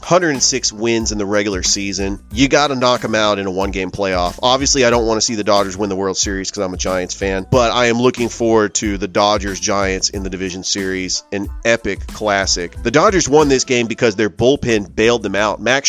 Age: 30-49